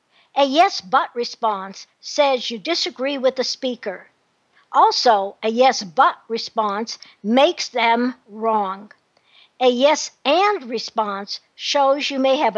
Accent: American